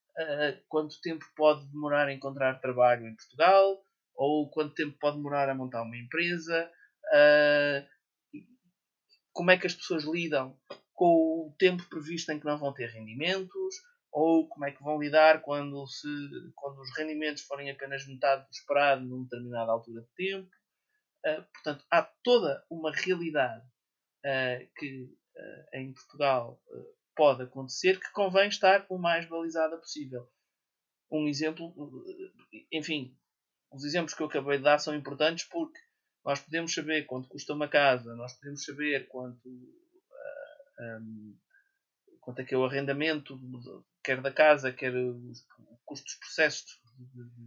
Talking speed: 150 wpm